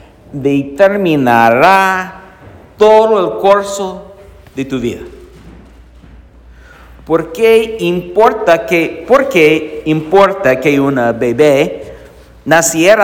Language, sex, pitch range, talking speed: English, male, 130-180 Hz, 70 wpm